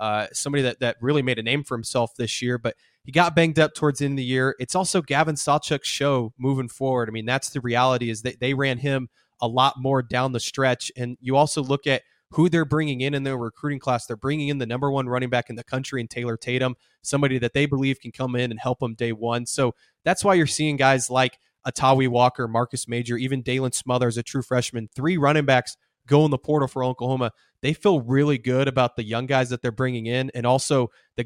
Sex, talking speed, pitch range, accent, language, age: male, 240 wpm, 125-145 Hz, American, English, 20-39